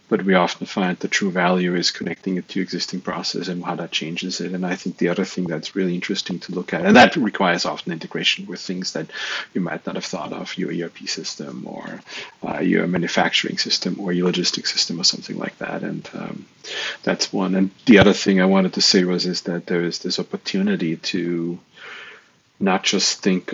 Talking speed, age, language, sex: 210 wpm, 40-59, English, male